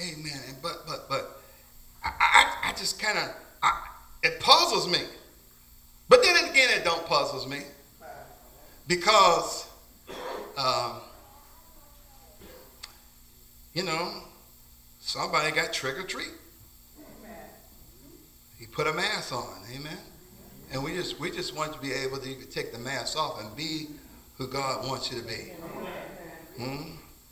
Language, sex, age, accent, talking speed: English, male, 50-69, American, 125 wpm